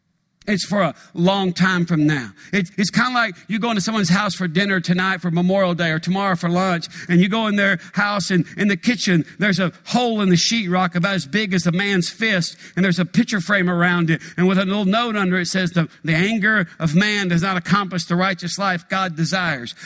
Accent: American